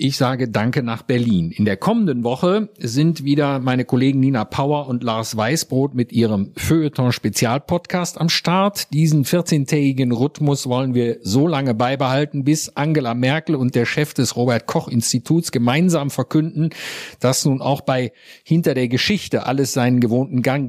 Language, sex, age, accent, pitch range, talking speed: German, male, 50-69, German, 120-150 Hz, 150 wpm